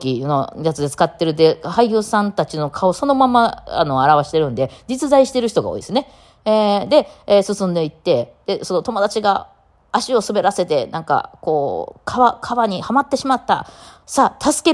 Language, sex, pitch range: Japanese, female, 140-220 Hz